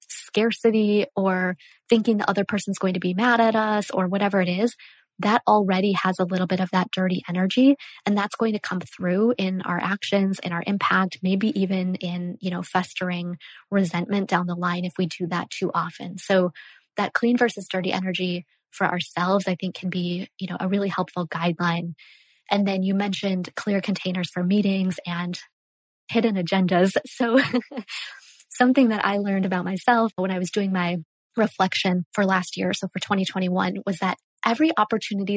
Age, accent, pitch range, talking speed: 20-39, American, 180-200 Hz, 180 wpm